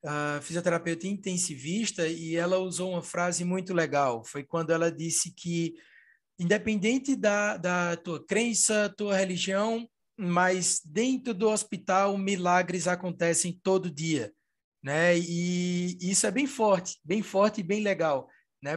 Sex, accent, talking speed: male, Brazilian, 140 wpm